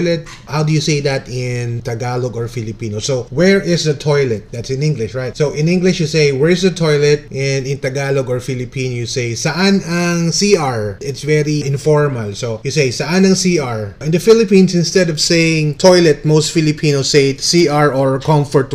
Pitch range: 130-170 Hz